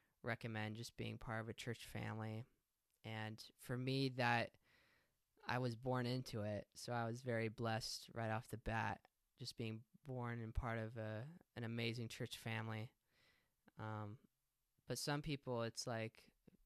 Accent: American